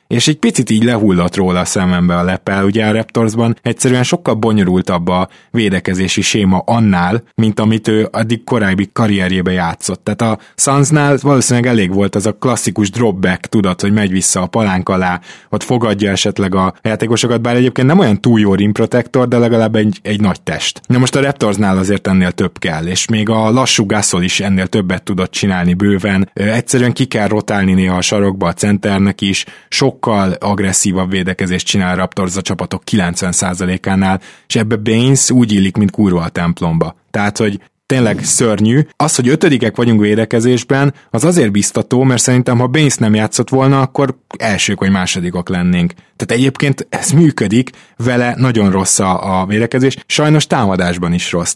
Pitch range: 95-120 Hz